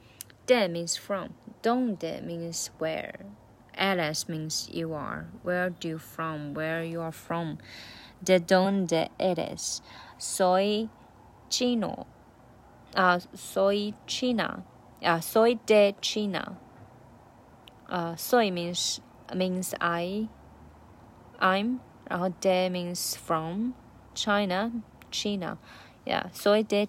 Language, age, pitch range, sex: Chinese, 20-39, 165-205 Hz, female